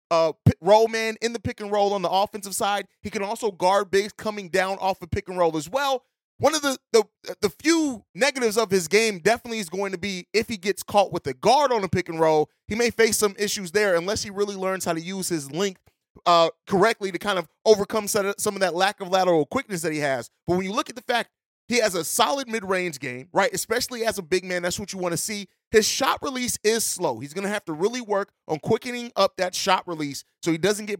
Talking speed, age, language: 255 wpm, 30-49, English